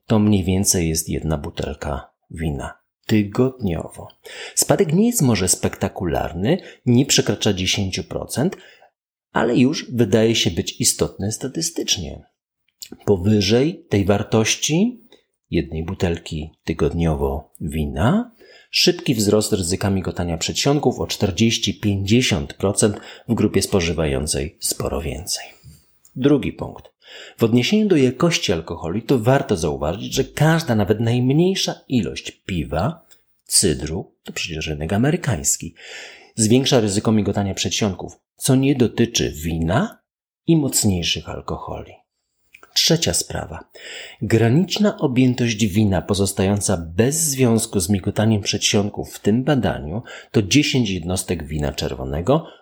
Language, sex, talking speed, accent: Polish, male, 105 wpm, native